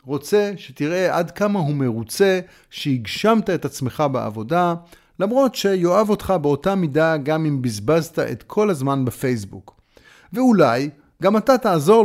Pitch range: 130-190 Hz